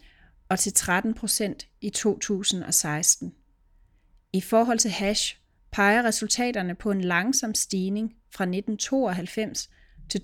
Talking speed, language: 100 wpm, Danish